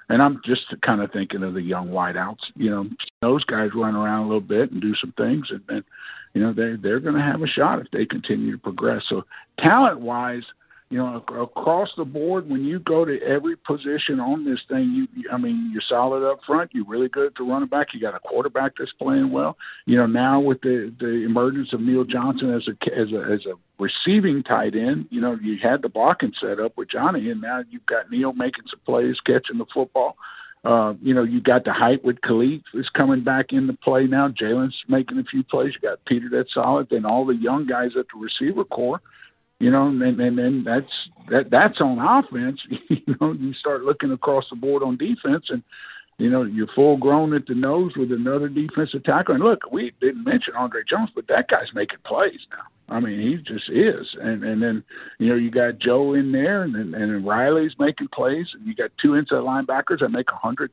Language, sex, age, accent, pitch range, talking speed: English, male, 50-69, American, 120-180 Hz, 220 wpm